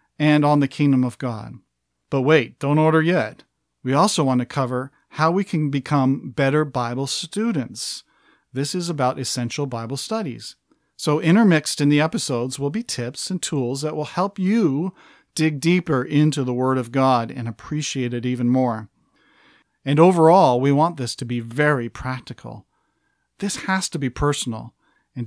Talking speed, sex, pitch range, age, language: 165 wpm, male, 125-160 Hz, 50-69, English